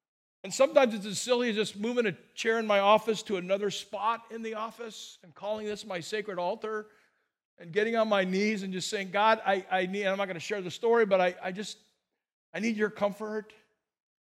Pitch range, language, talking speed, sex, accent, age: 185-215 Hz, English, 215 wpm, male, American, 50-69